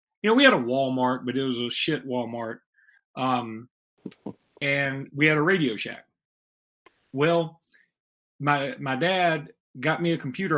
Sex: male